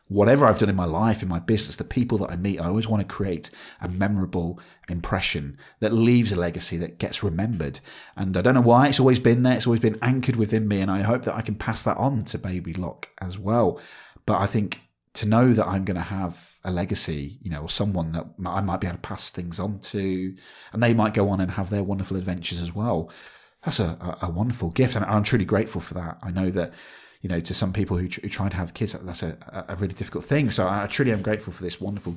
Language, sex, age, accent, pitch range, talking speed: English, male, 30-49, British, 90-120 Hz, 255 wpm